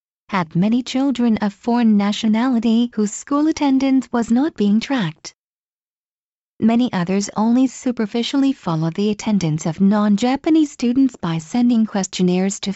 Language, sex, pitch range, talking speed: English, female, 190-240 Hz, 125 wpm